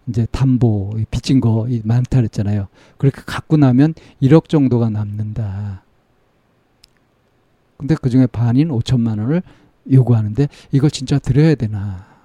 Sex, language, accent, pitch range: male, Korean, native, 115-140 Hz